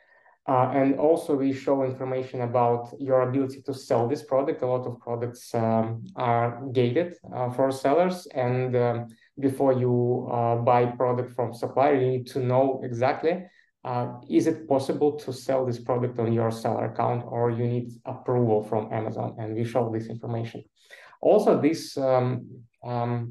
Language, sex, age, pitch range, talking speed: English, male, 20-39, 120-135 Hz, 165 wpm